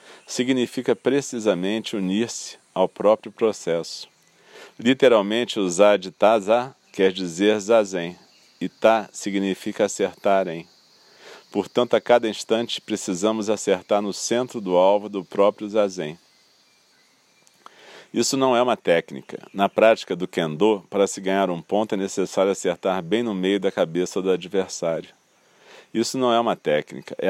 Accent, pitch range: Brazilian, 95-110 Hz